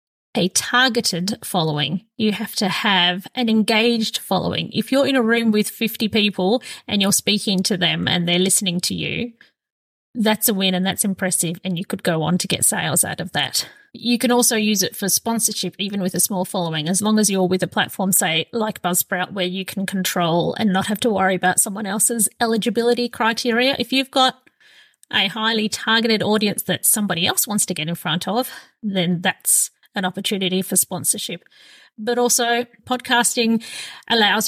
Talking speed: 185 wpm